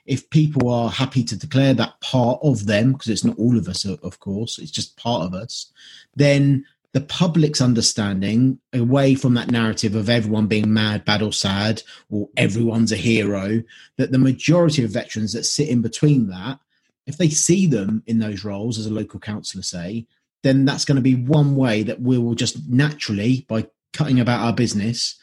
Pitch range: 110-140 Hz